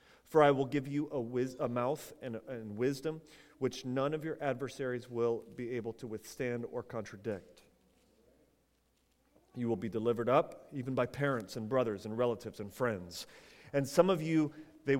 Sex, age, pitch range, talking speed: male, 40-59, 120-155 Hz, 175 wpm